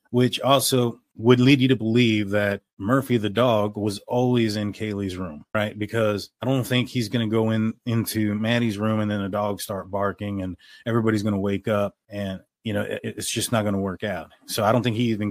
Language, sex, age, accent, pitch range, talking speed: English, male, 30-49, American, 100-115 Hz, 225 wpm